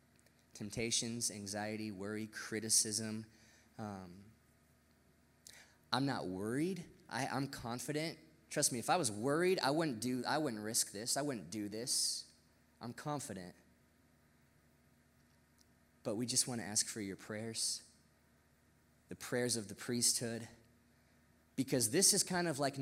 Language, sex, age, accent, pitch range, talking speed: English, male, 20-39, American, 110-150 Hz, 130 wpm